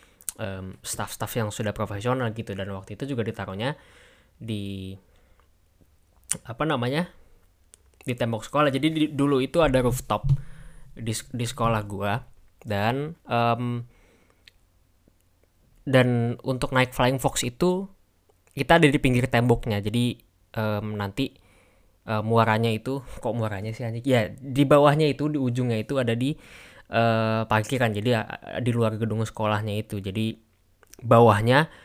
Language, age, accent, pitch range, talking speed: Indonesian, 10-29, native, 105-130 Hz, 130 wpm